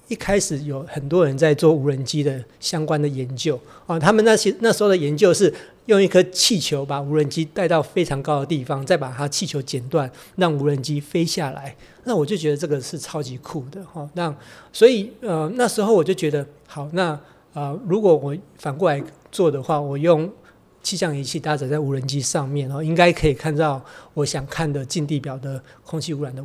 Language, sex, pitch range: Chinese, male, 140-175 Hz